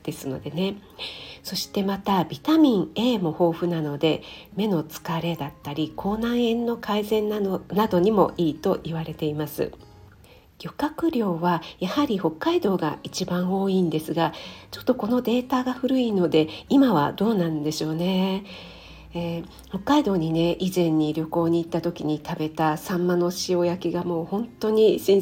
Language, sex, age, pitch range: Japanese, female, 50-69, 160-215 Hz